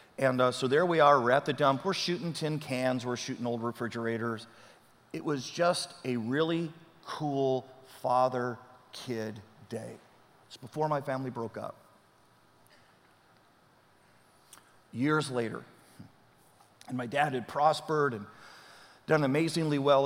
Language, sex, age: English, male, 40-59